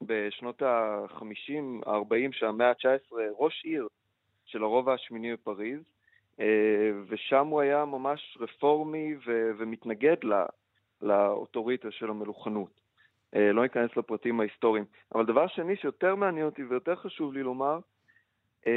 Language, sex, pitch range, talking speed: Hebrew, male, 110-145 Hz, 115 wpm